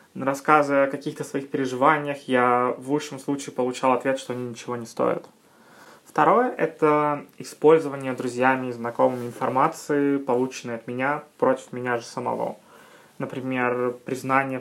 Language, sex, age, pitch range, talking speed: Russian, male, 20-39, 125-150 Hz, 130 wpm